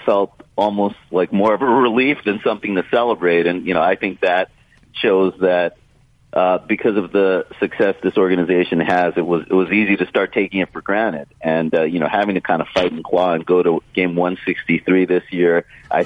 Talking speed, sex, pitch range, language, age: 215 wpm, male, 90-105 Hz, English, 40-59